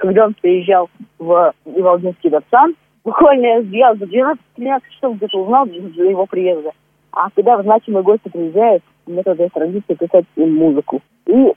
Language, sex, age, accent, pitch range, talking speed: Russian, female, 20-39, native, 170-230 Hz, 160 wpm